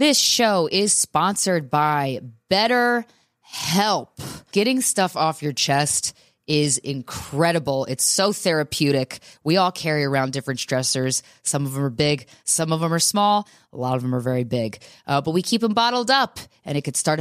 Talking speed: 175 wpm